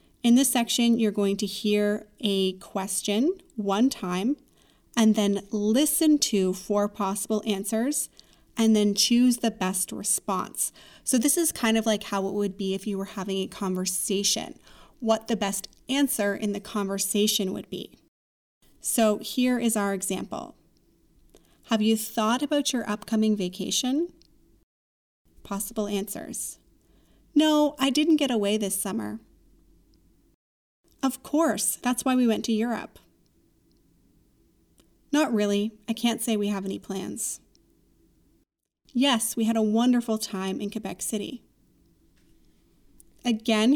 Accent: American